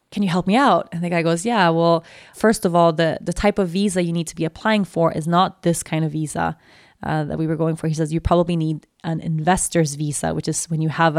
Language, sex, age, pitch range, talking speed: English, female, 20-39, 165-215 Hz, 270 wpm